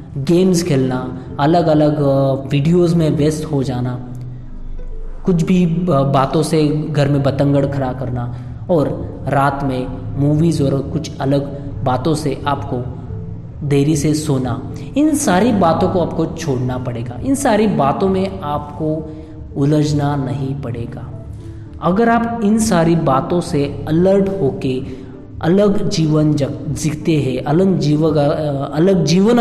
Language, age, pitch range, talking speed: Hindi, 20-39, 130-165 Hz, 130 wpm